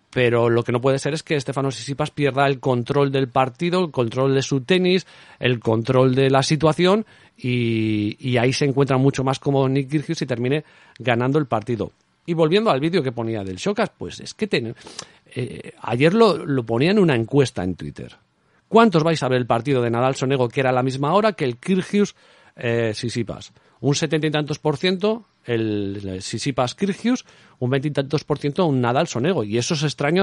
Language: Spanish